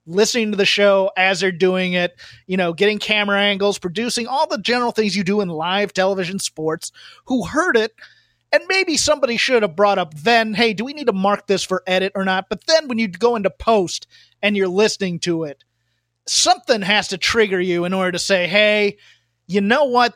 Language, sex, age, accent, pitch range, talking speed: English, male, 30-49, American, 185-225 Hz, 210 wpm